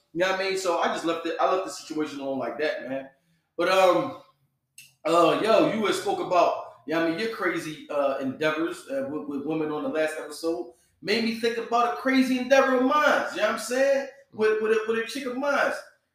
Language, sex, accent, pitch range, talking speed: English, male, American, 175-265 Hz, 240 wpm